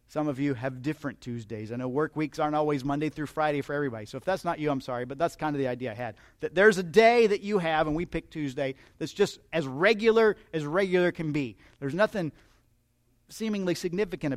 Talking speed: 230 wpm